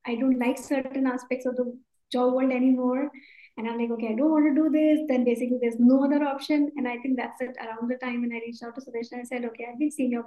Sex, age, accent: male, 20-39, Indian